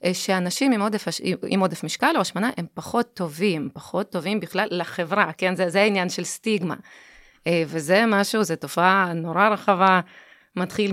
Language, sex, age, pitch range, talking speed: Hebrew, female, 20-39, 170-205 Hz, 155 wpm